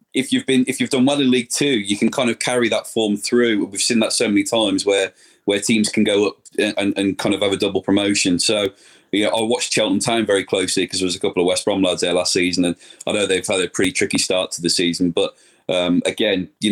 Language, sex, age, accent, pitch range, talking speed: English, male, 30-49, British, 90-105 Hz, 270 wpm